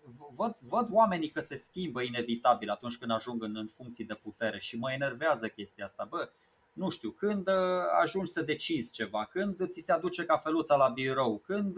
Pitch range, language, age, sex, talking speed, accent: 125-185 Hz, Romanian, 20-39, male, 190 wpm, native